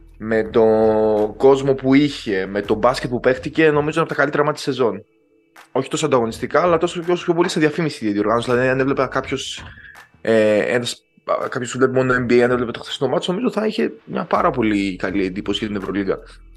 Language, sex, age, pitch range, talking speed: Greek, male, 20-39, 110-135 Hz, 190 wpm